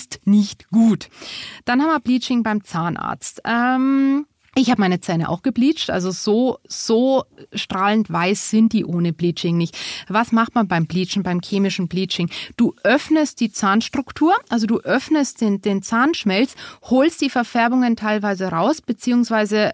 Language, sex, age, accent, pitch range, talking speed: German, female, 30-49, German, 180-230 Hz, 150 wpm